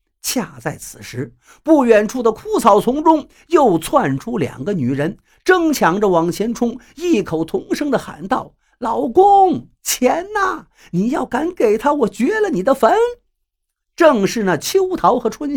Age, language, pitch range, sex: 50-69, Chinese, 180-295 Hz, male